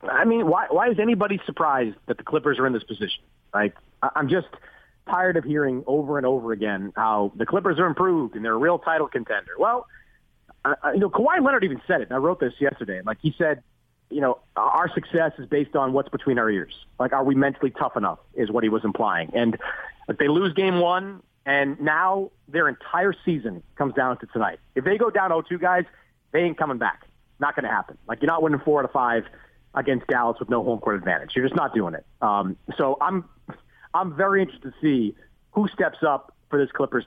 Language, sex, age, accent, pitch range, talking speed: English, male, 30-49, American, 125-180 Hz, 220 wpm